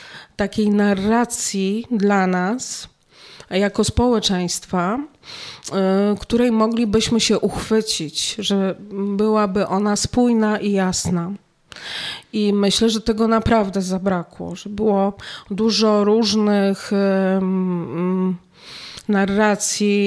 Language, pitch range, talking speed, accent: Polish, 185-215 Hz, 80 wpm, native